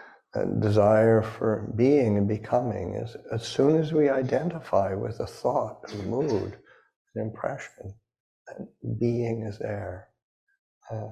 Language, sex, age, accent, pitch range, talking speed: English, male, 60-79, American, 105-125 Hz, 130 wpm